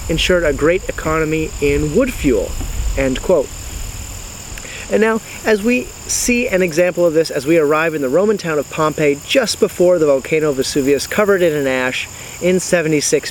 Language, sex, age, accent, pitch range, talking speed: English, male, 30-49, American, 150-185 Hz, 175 wpm